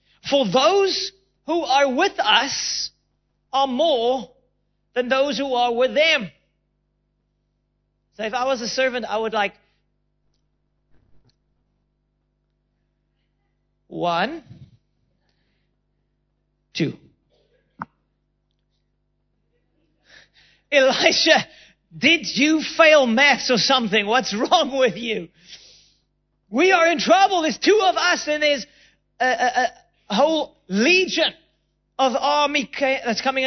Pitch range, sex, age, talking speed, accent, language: 220-310 Hz, male, 40-59, 95 wpm, American, English